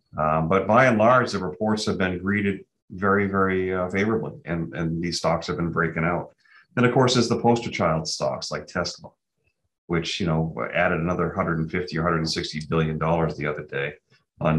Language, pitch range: English, 80-100 Hz